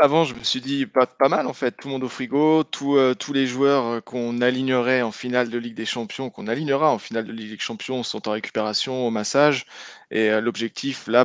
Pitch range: 110-130 Hz